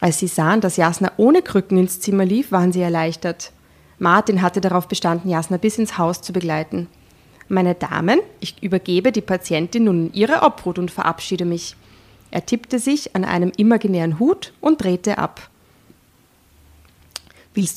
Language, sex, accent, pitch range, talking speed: German, female, German, 175-205 Hz, 160 wpm